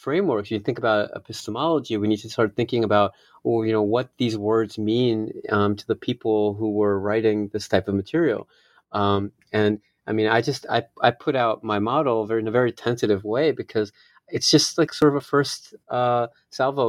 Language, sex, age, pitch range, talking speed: English, male, 30-49, 105-115 Hz, 195 wpm